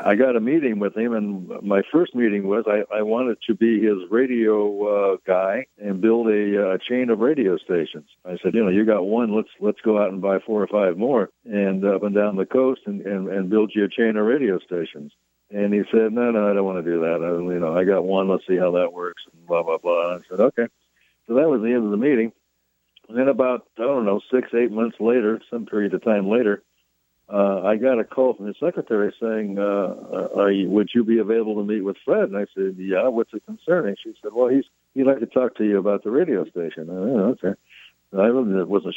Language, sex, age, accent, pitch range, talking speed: English, male, 60-79, American, 100-120 Hz, 245 wpm